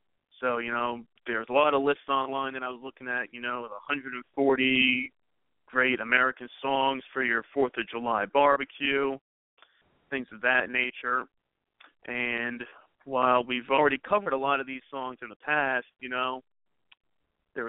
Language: English